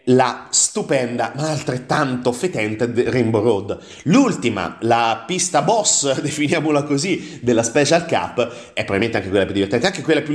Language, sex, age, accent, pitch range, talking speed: Italian, male, 30-49, native, 120-155 Hz, 145 wpm